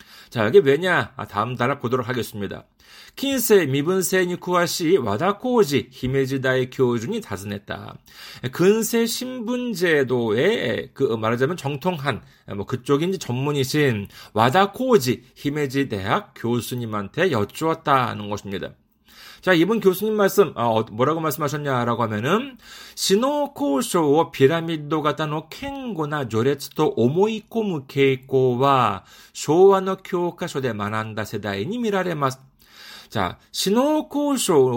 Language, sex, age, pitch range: Korean, male, 40-59, 125-195 Hz